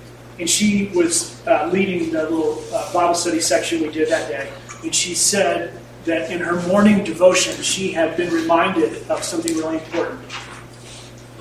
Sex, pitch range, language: male, 120-190 Hz, English